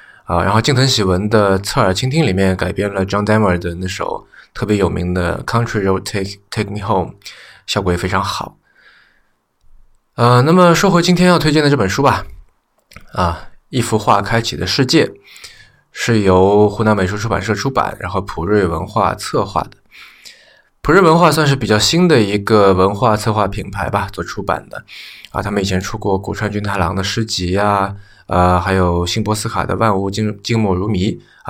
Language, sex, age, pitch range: Chinese, male, 20-39, 95-120 Hz